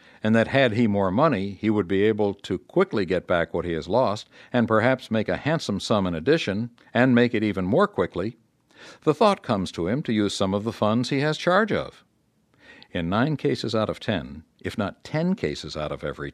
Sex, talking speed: male, 220 wpm